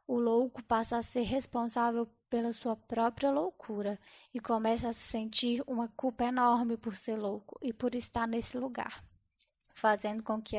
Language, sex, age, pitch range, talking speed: Portuguese, female, 10-29, 225-250 Hz, 165 wpm